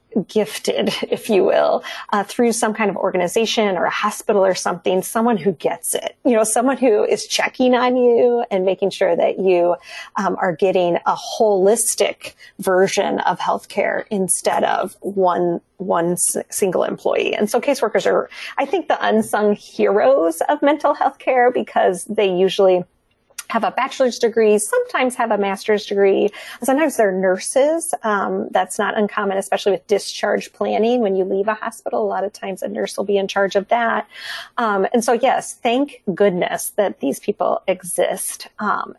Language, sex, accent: English, female, American